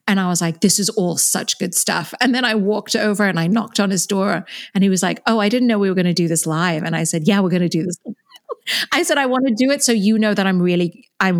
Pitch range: 170-215 Hz